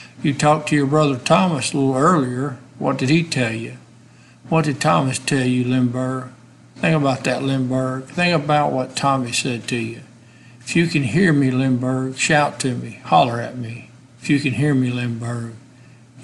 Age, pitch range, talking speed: 60-79, 125-140 Hz, 180 wpm